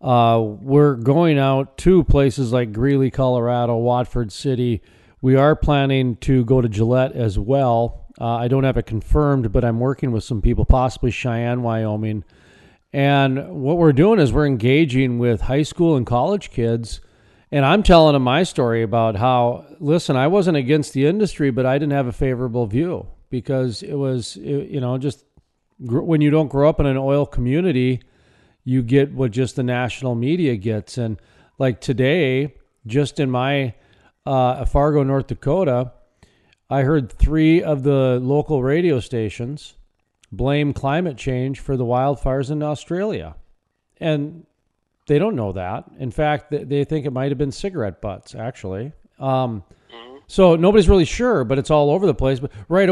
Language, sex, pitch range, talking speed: English, male, 120-145 Hz, 165 wpm